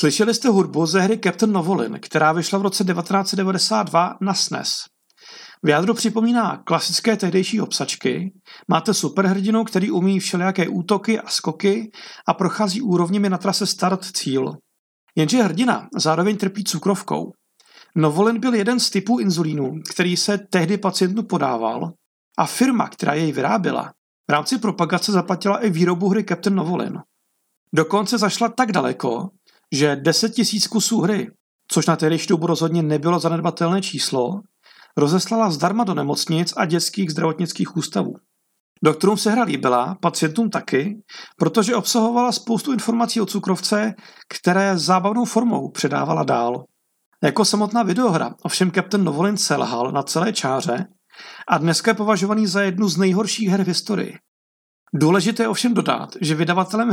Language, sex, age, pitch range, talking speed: Czech, male, 40-59, 175-215 Hz, 140 wpm